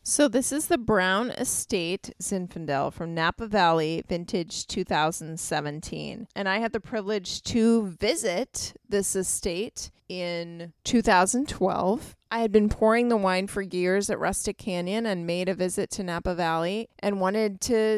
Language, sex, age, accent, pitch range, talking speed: English, female, 20-39, American, 180-225 Hz, 145 wpm